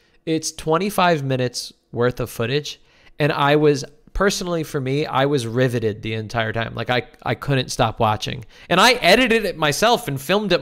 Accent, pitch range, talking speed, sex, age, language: American, 120-155 Hz, 180 wpm, male, 20-39, English